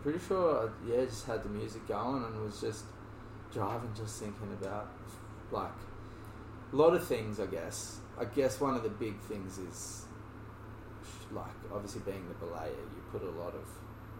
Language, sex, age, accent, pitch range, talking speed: English, male, 20-39, Australian, 105-115 Hz, 170 wpm